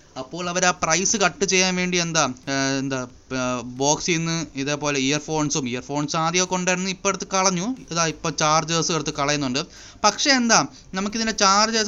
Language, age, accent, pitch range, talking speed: Malayalam, 20-39, native, 150-190 Hz, 80 wpm